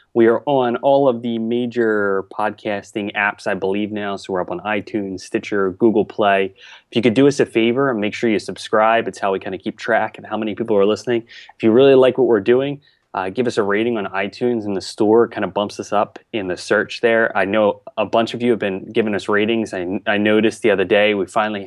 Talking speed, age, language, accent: 250 wpm, 20-39, English, American